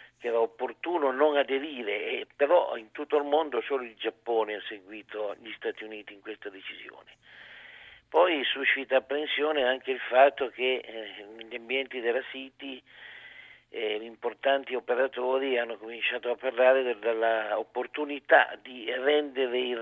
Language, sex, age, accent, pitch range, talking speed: Italian, male, 50-69, native, 115-135 Hz, 140 wpm